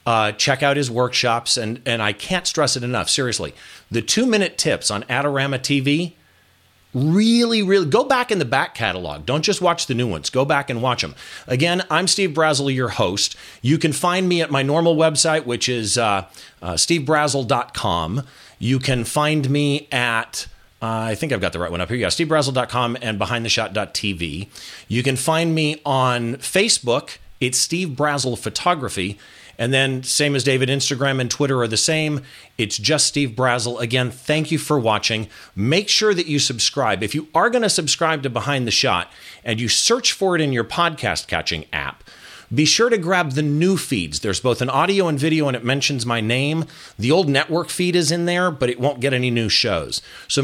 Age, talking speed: 40-59, 195 wpm